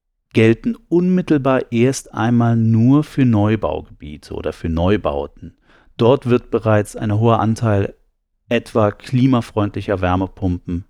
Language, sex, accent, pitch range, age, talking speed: German, male, German, 100-125 Hz, 40-59, 105 wpm